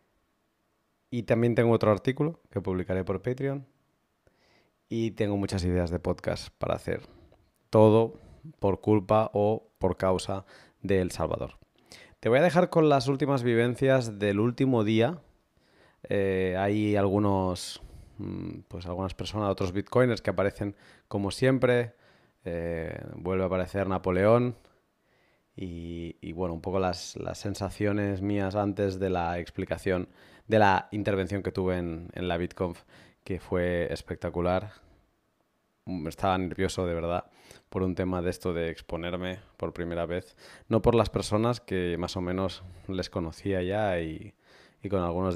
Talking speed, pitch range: 145 wpm, 90-105 Hz